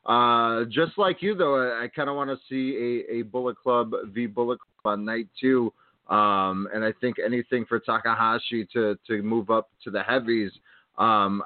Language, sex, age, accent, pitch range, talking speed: English, male, 30-49, American, 105-135 Hz, 185 wpm